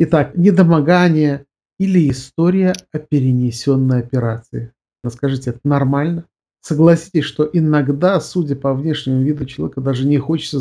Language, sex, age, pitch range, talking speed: Russian, male, 50-69, 130-155 Hz, 120 wpm